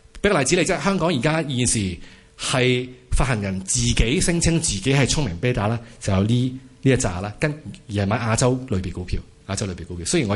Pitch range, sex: 95-135 Hz, male